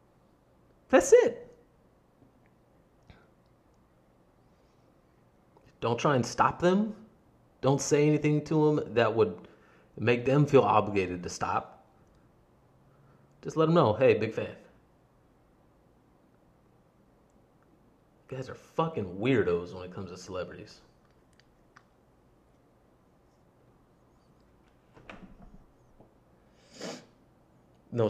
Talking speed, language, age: 80 wpm, English, 30-49